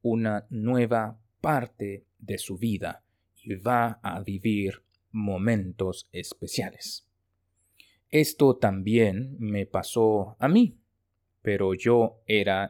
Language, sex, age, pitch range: Chinese, male, 30-49, 95-120 Hz